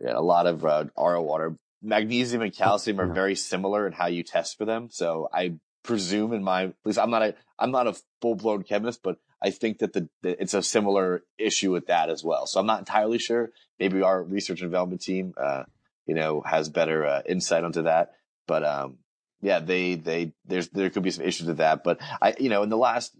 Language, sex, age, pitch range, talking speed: English, male, 30-49, 80-95 Hz, 230 wpm